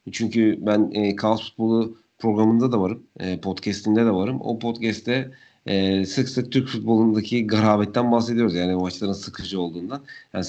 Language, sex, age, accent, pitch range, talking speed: Turkish, male, 40-59, native, 95-115 Hz, 150 wpm